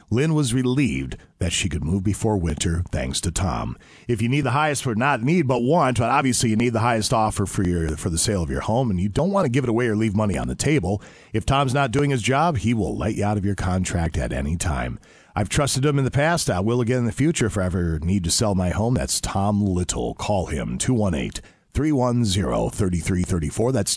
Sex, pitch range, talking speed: male, 90-135 Hz, 240 wpm